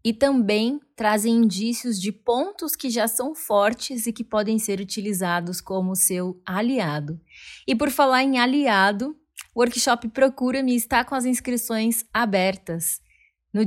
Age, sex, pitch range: 20-39, female, 200-245 Hz